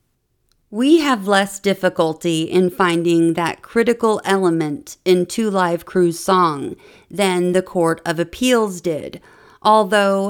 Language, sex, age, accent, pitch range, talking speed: English, female, 40-59, American, 175-220 Hz, 120 wpm